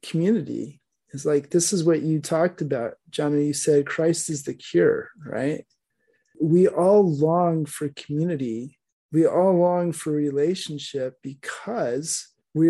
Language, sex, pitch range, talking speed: English, male, 145-165 Hz, 140 wpm